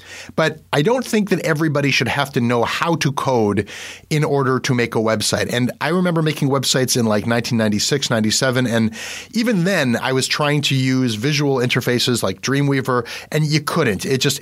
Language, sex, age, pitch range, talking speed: English, male, 30-49, 115-155 Hz, 185 wpm